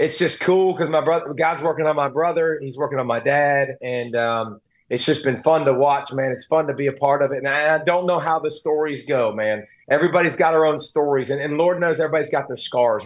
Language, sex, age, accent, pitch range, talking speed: English, male, 30-49, American, 140-175 Hz, 255 wpm